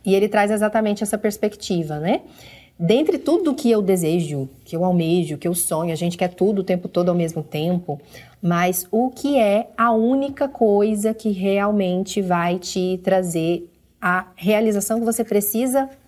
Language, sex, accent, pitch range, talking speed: Portuguese, female, Brazilian, 180-230 Hz, 170 wpm